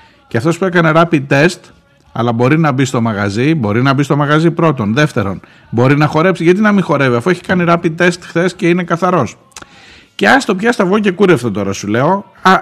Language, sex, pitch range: Greek, male, 110-170 Hz